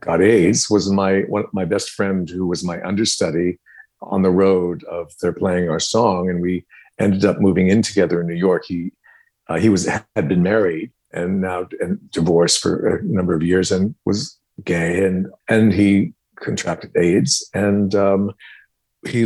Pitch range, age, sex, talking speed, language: 95-110 Hz, 50-69, male, 180 wpm, English